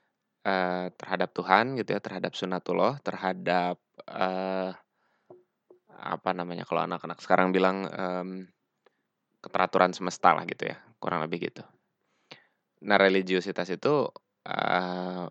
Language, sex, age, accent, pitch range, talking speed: Indonesian, male, 20-39, native, 85-95 Hz, 110 wpm